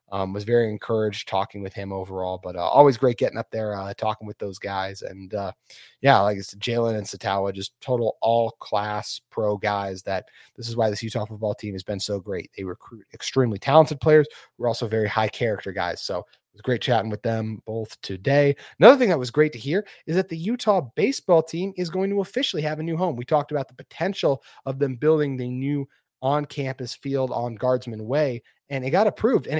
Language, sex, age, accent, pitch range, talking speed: English, male, 30-49, American, 110-145 Hz, 215 wpm